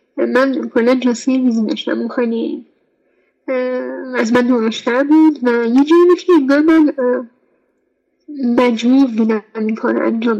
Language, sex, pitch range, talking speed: Persian, female, 240-285 Hz, 120 wpm